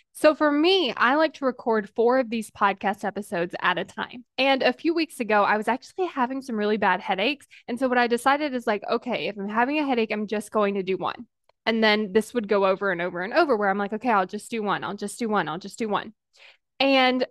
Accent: American